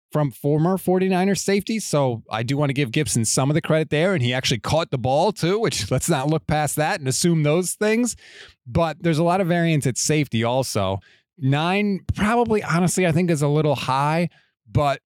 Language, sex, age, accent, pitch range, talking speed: English, male, 30-49, American, 130-175 Hz, 205 wpm